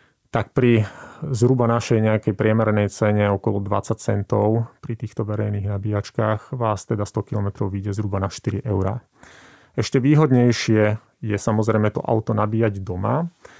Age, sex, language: 30-49, male, Slovak